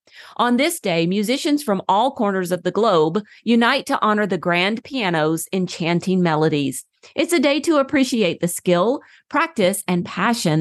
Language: English